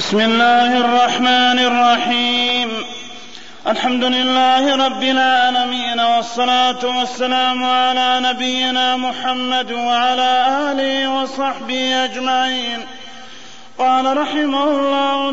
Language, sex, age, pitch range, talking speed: Arabic, male, 30-49, 255-280 Hz, 80 wpm